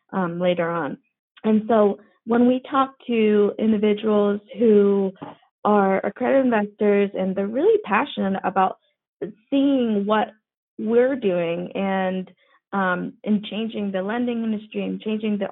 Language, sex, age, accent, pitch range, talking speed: English, female, 20-39, American, 185-225 Hz, 130 wpm